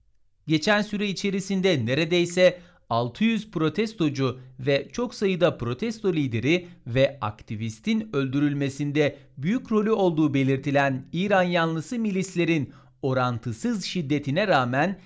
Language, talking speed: Turkish, 95 wpm